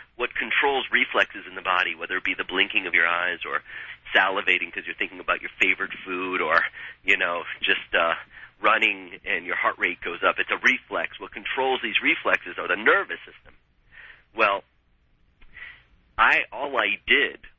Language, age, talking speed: English, 40-59, 175 wpm